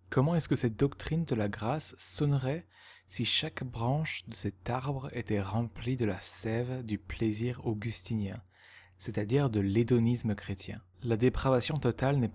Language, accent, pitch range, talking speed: French, French, 105-125 Hz, 150 wpm